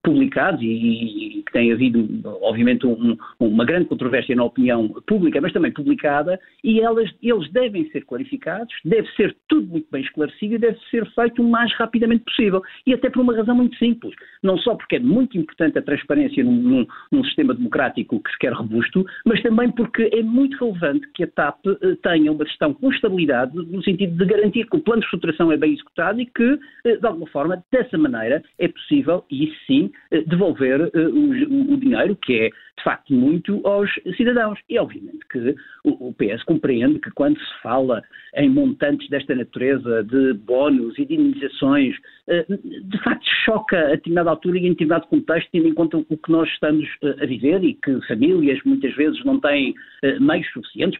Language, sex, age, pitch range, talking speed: Portuguese, male, 50-69, 155-260 Hz, 190 wpm